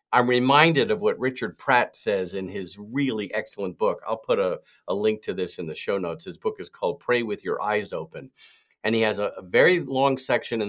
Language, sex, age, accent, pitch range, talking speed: English, male, 50-69, American, 110-145 Hz, 230 wpm